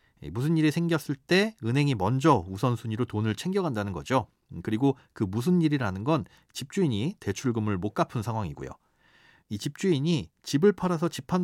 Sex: male